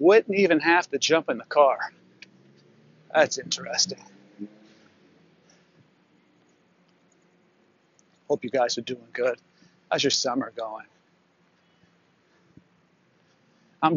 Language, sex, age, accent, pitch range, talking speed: English, male, 40-59, American, 120-150 Hz, 90 wpm